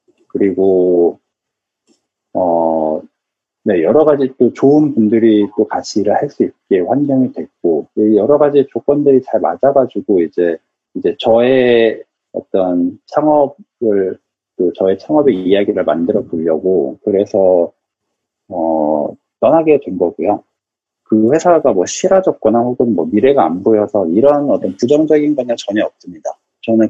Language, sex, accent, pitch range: Korean, male, native, 105-155 Hz